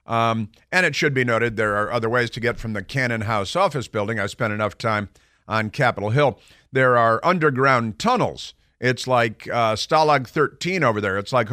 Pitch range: 110-130 Hz